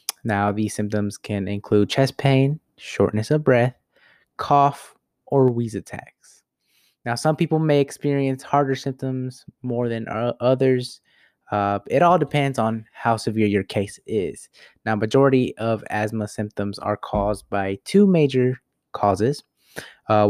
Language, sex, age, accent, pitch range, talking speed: English, male, 20-39, American, 105-130 Hz, 135 wpm